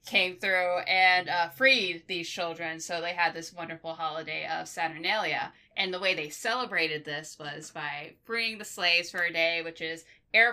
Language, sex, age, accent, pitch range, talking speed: English, female, 20-39, American, 160-185 Hz, 180 wpm